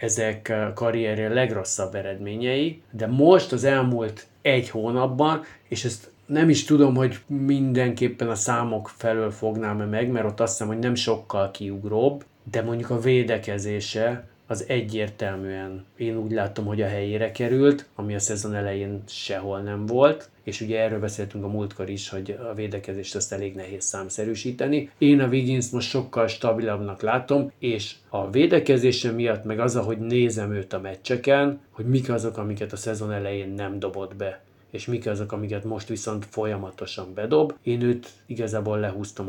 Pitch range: 105-130 Hz